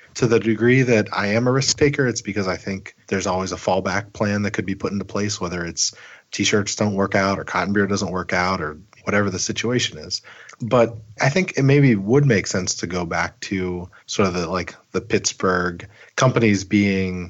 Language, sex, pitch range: English, male, 95-115 Hz